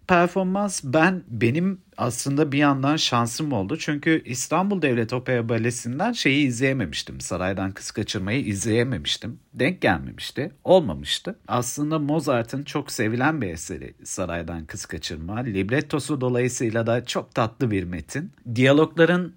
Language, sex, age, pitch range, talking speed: Turkish, male, 50-69, 105-145 Hz, 120 wpm